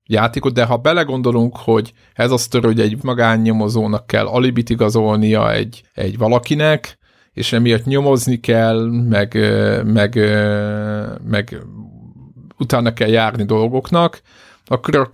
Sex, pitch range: male, 110-120 Hz